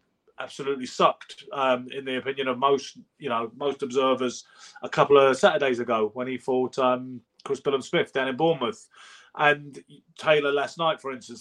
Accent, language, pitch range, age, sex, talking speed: British, English, 130-180 Hz, 30-49, male, 170 wpm